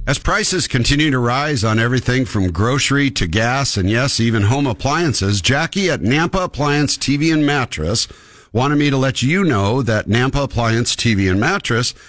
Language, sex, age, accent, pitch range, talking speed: English, male, 60-79, American, 110-150 Hz, 175 wpm